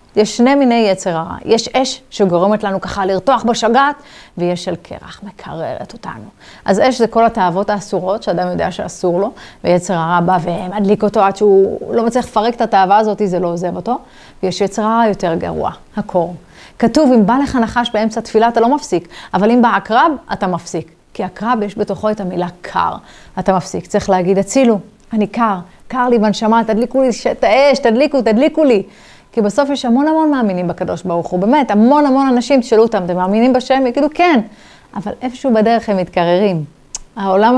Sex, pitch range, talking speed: female, 195-250 Hz, 180 wpm